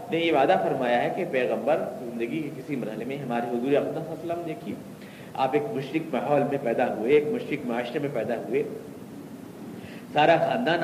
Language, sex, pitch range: Urdu, male, 140-220 Hz